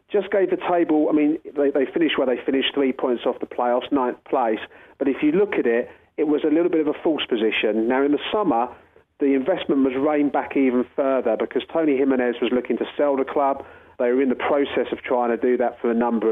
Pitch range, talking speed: 115-140 Hz, 245 wpm